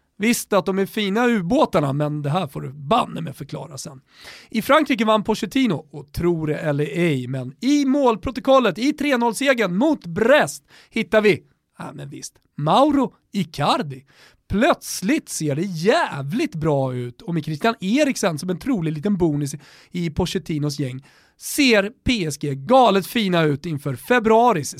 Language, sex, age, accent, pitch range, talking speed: Swedish, male, 40-59, native, 145-235 Hz, 155 wpm